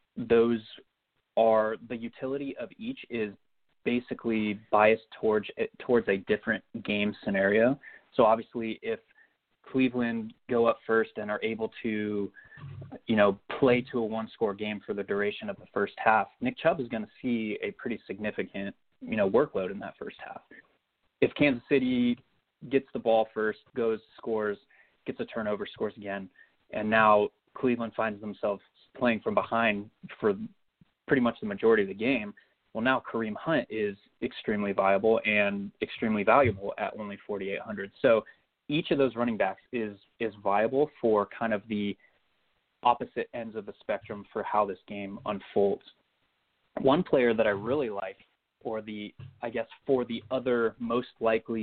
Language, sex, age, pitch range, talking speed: English, male, 20-39, 105-125 Hz, 160 wpm